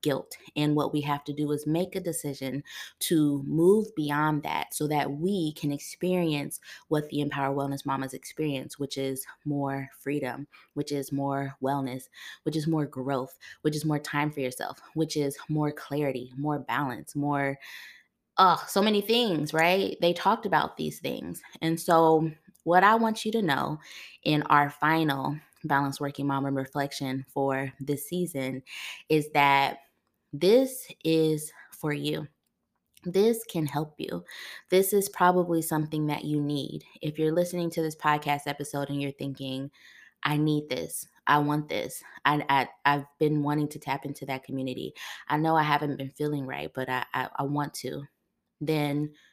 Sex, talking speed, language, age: female, 165 wpm, English, 20-39